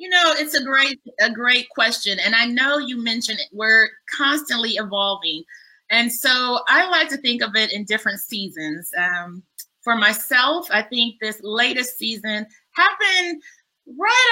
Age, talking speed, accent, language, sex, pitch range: 30-49, 160 wpm, American, English, female, 210-280 Hz